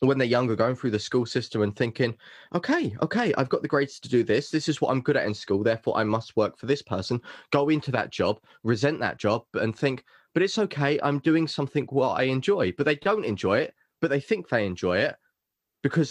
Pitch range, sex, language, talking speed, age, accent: 115-155 Hz, male, English, 240 wpm, 20-39, British